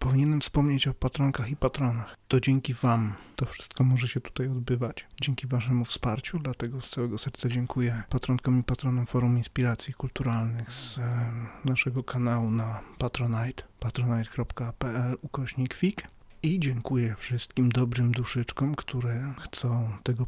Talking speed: 125 wpm